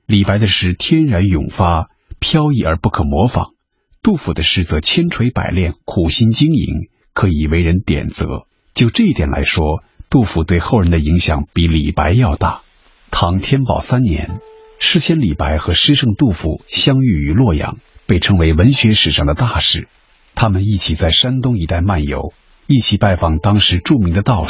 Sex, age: male, 50-69